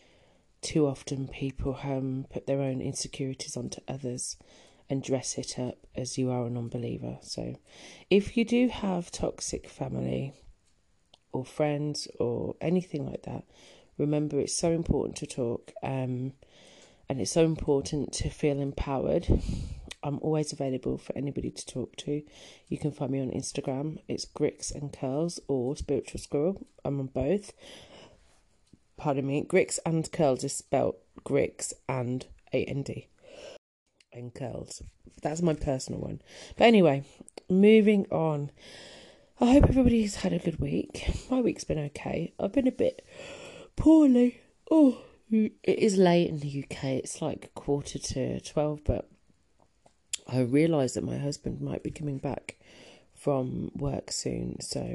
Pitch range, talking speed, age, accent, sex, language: 130-160 Hz, 145 wpm, 30-49, British, female, English